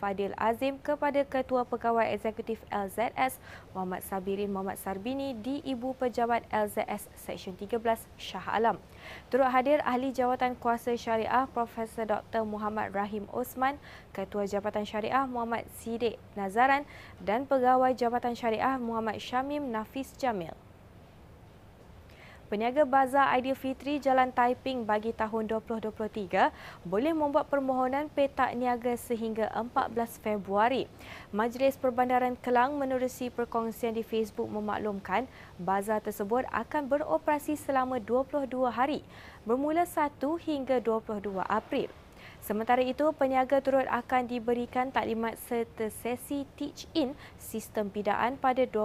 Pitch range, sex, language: 215-260 Hz, female, Malay